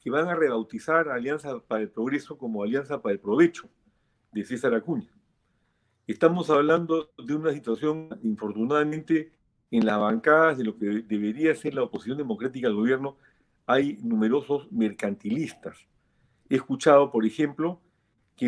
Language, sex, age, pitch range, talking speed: Spanish, male, 50-69, 115-165 Hz, 140 wpm